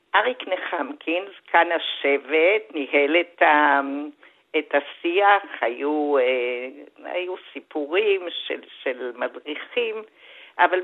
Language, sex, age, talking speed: Hebrew, female, 60-79, 90 wpm